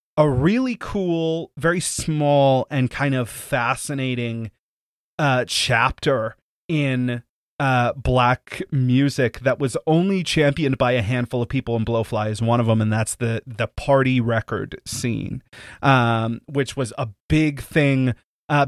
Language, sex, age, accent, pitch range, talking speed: English, male, 30-49, American, 125-155 Hz, 140 wpm